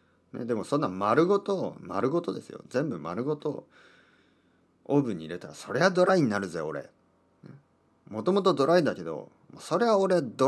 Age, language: 40-59, Japanese